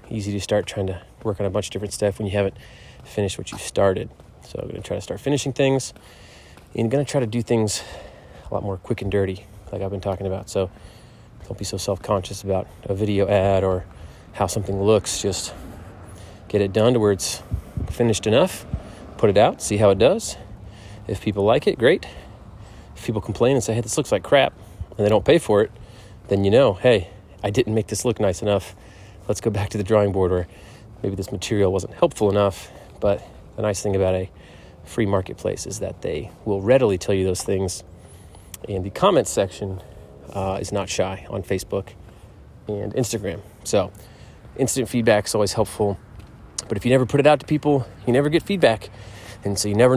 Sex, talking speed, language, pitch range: male, 210 wpm, English, 95-115 Hz